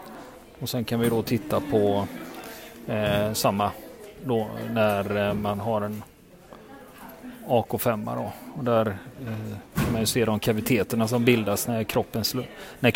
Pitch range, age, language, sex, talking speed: 110-125 Hz, 30-49, Swedish, male, 135 wpm